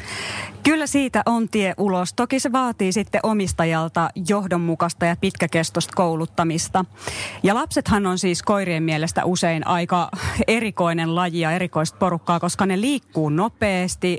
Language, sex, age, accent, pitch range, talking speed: Finnish, female, 30-49, native, 165-210 Hz, 130 wpm